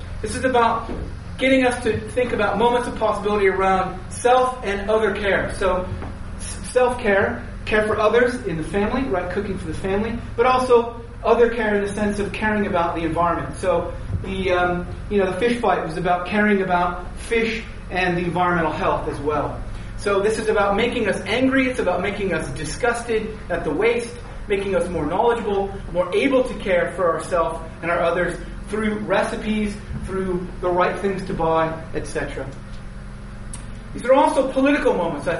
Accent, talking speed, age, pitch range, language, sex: American, 175 wpm, 30-49, 180-225 Hz, English, male